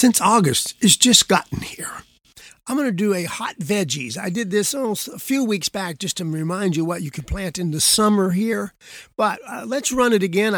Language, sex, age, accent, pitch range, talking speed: English, male, 50-69, American, 155-200 Hz, 220 wpm